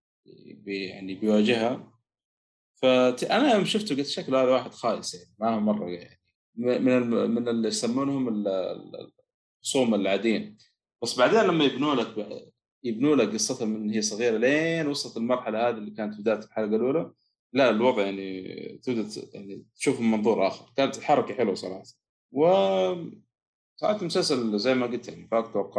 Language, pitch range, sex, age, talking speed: Arabic, 100-130 Hz, male, 30-49, 150 wpm